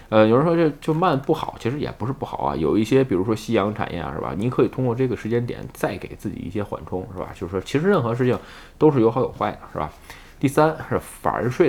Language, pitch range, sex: Chinese, 90-130 Hz, male